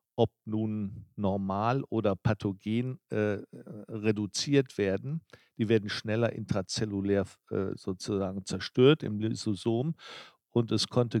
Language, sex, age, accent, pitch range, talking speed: German, male, 50-69, German, 100-115 Hz, 105 wpm